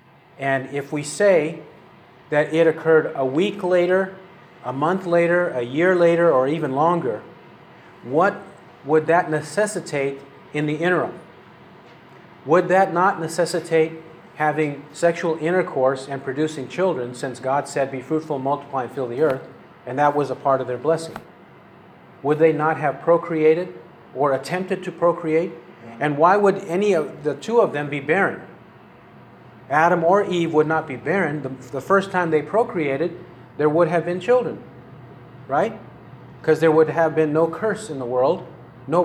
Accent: American